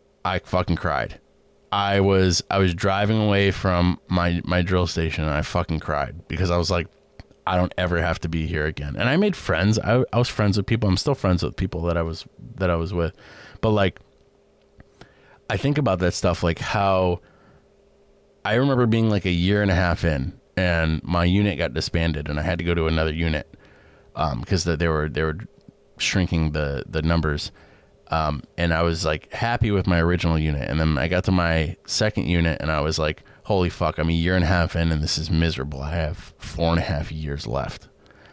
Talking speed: 215 wpm